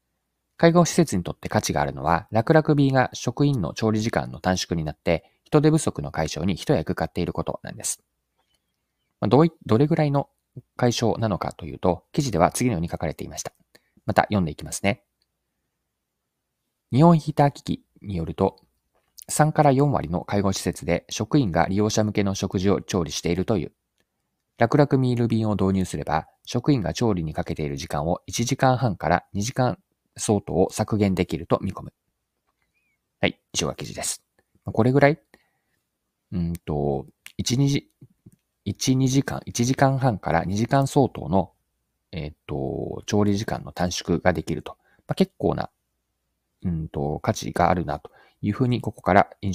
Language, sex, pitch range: Japanese, male, 85-135 Hz